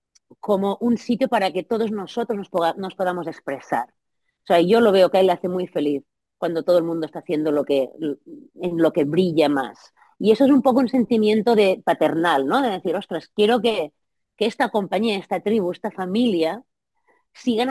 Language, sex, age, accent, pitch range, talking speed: Spanish, female, 30-49, Spanish, 175-245 Hz, 195 wpm